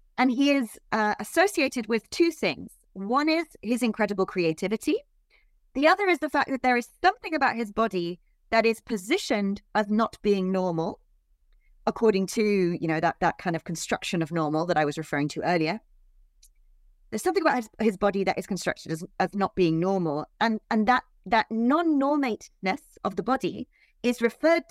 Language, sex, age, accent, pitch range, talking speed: English, female, 30-49, British, 195-270 Hz, 175 wpm